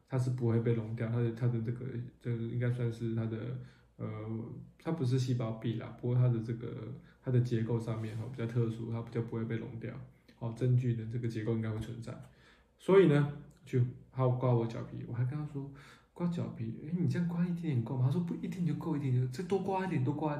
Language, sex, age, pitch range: Chinese, male, 20-39, 115-140 Hz